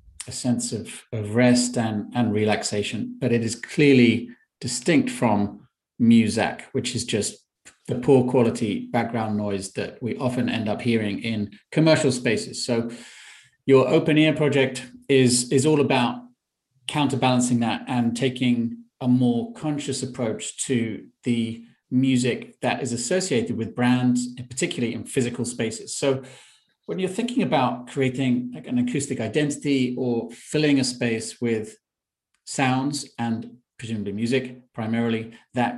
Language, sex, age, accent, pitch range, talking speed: English, male, 40-59, British, 115-135 Hz, 140 wpm